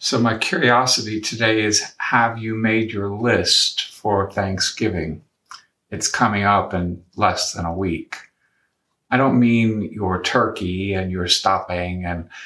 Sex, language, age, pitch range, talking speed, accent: male, English, 50-69, 95-115 Hz, 140 wpm, American